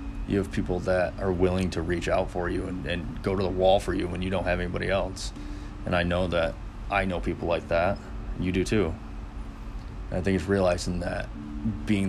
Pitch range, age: 85-95 Hz, 20-39